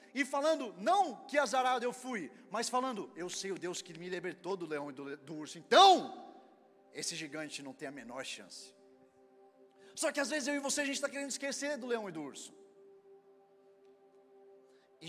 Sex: male